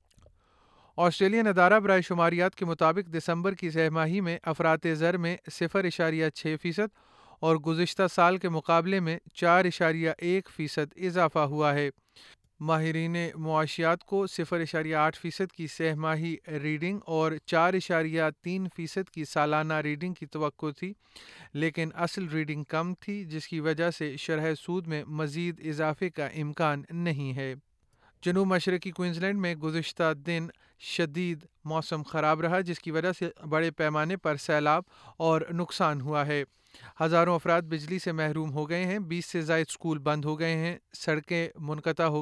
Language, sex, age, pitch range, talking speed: Urdu, male, 30-49, 155-175 Hz, 150 wpm